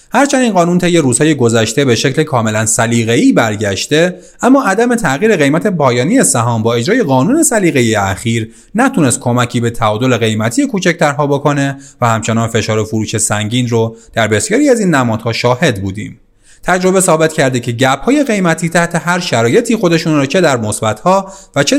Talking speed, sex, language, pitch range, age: 165 wpm, male, Persian, 115-185 Hz, 30-49